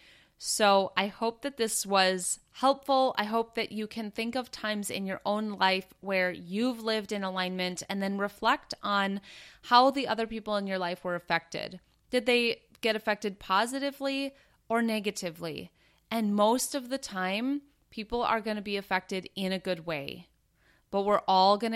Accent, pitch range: American, 190-245 Hz